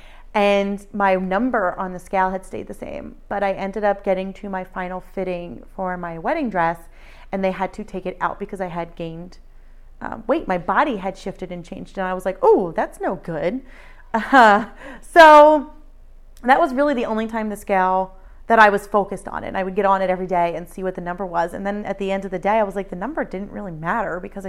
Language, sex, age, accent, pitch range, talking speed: English, female, 30-49, American, 185-215 Hz, 240 wpm